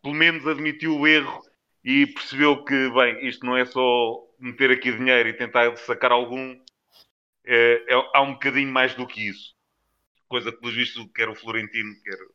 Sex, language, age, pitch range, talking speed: male, Portuguese, 30-49, 110-130 Hz, 180 wpm